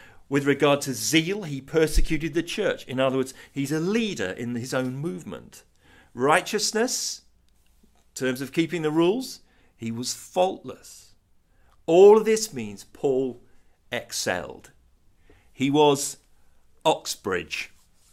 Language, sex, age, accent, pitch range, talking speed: English, male, 40-59, British, 120-150 Hz, 120 wpm